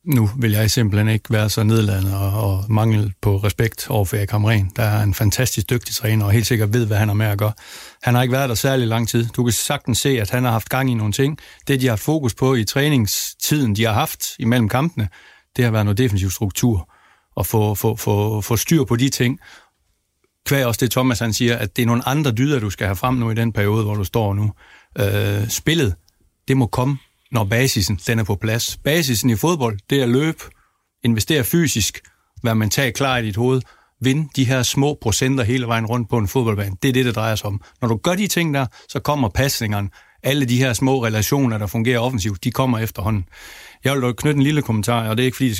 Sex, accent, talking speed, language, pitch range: male, native, 235 wpm, Danish, 105-130 Hz